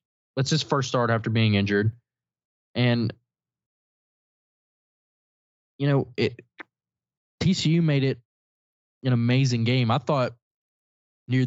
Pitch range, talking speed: 110-135 Hz, 105 wpm